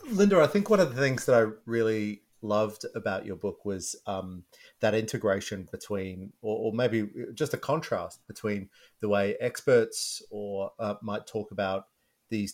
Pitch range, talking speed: 95-115 Hz, 165 wpm